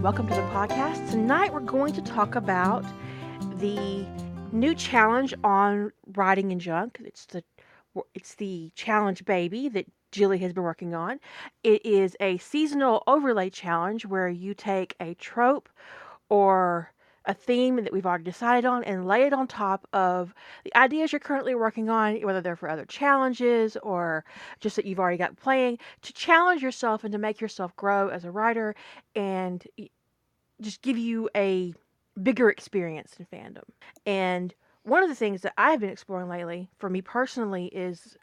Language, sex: English, female